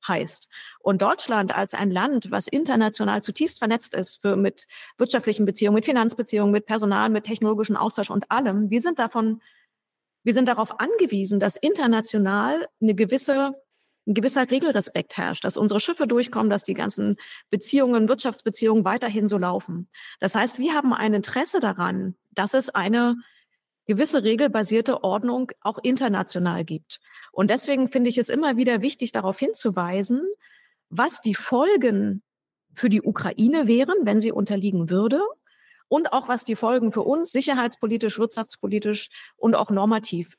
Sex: female